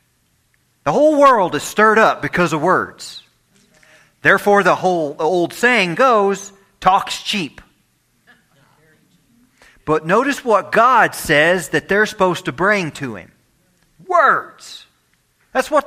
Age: 40-59